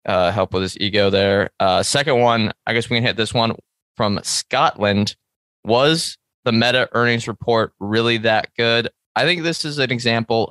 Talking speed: 185 wpm